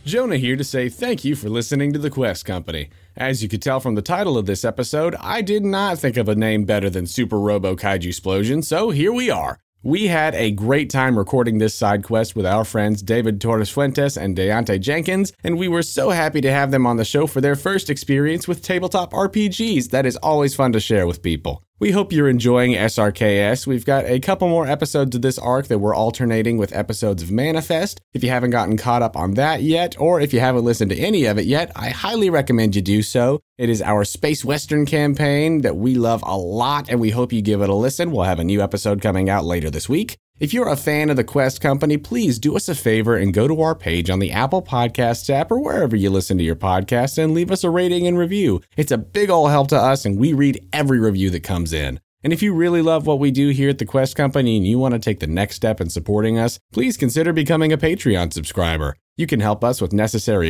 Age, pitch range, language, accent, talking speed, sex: 30-49, 105-150 Hz, English, American, 245 wpm, male